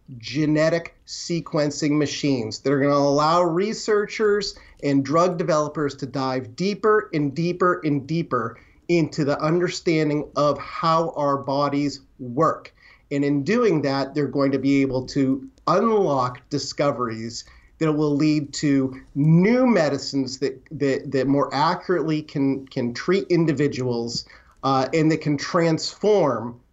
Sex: male